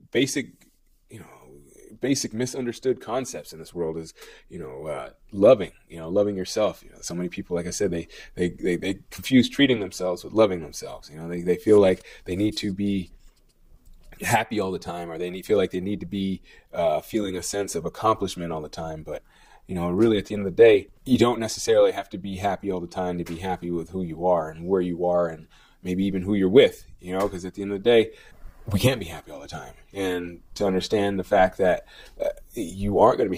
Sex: male